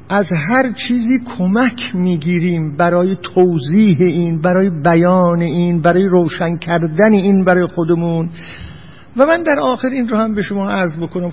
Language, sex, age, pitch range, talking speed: Persian, male, 50-69, 145-210 Hz, 150 wpm